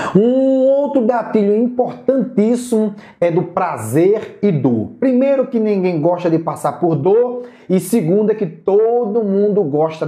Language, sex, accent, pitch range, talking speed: Portuguese, male, Brazilian, 165-215 Hz, 145 wpm